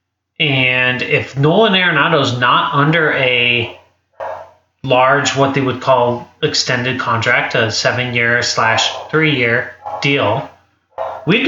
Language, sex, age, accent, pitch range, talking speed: English, male, 30-49, American, 115-160 Hz, 105 wpm